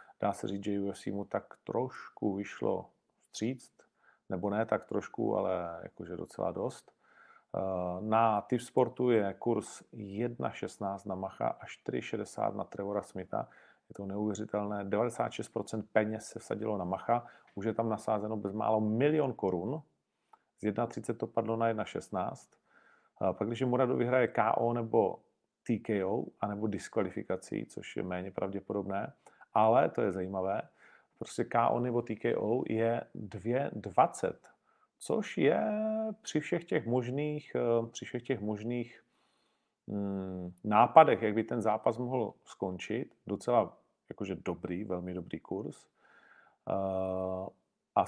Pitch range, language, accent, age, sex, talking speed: 100-120 Hz, Czech, native, 40-59, male, 125 wpm